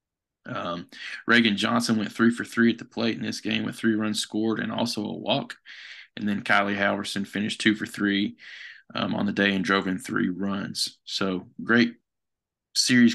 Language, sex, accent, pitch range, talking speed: English, male, American, 100-115 Hz, 185 wpm